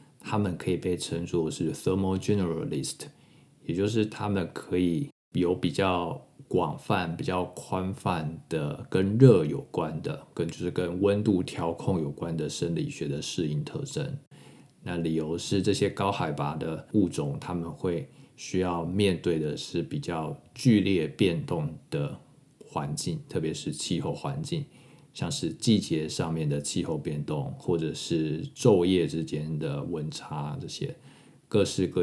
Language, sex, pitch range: Chinese, male, 80-105 Hz